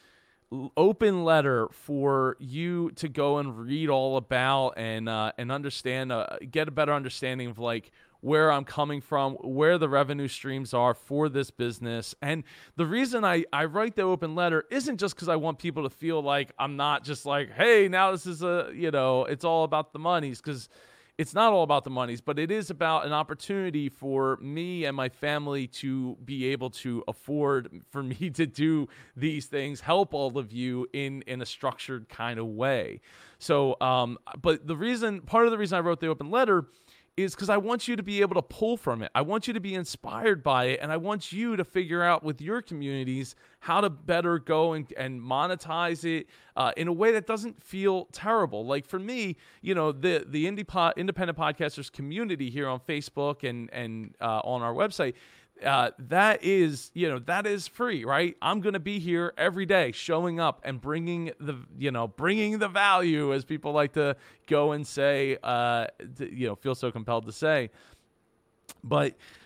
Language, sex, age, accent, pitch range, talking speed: English, male, 30-49, American, 130-175 Hz, 200 wpm